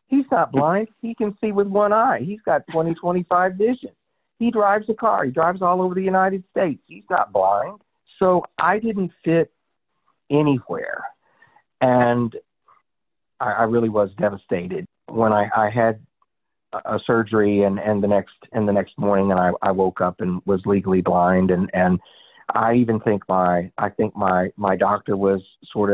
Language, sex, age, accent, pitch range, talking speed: English, male, 50-69, American, 100-145 Hz, 175 wpm